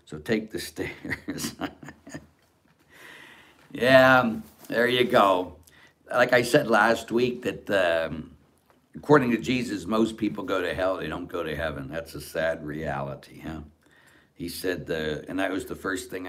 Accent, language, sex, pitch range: American, English, male, 80-120 Hz